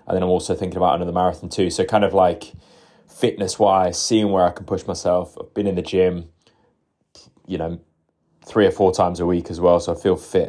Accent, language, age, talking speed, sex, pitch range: British, English, 20-39, 225 wpm, male, 90-100 Hz